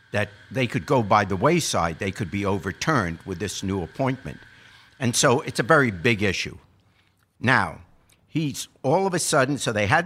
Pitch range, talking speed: 90-120 Hz, 185 wpm